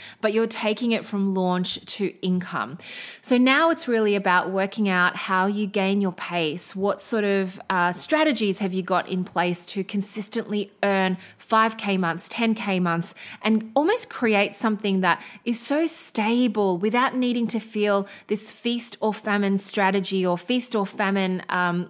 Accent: Australian